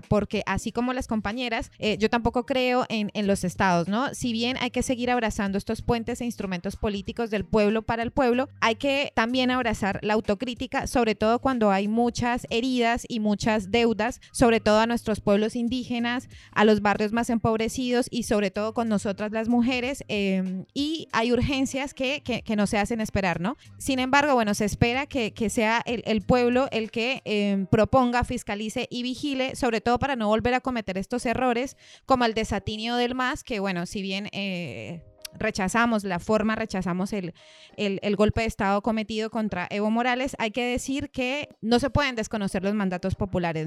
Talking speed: 185 wpm